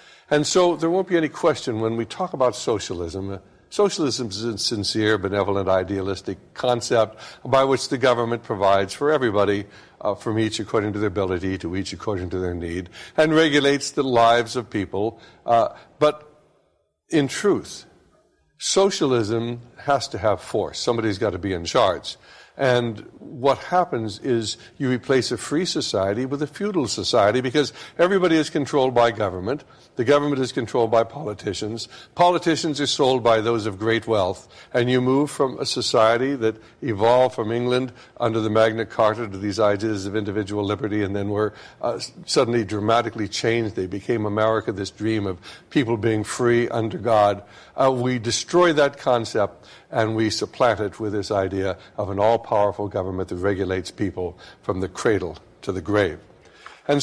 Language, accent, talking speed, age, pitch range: English, American, 165 wpm, 60-79, 105-130 Hz